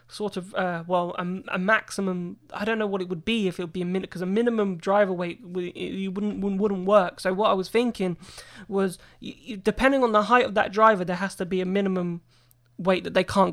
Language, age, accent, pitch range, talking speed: English, 20-39, British, 180-205 Hz, 230 wpm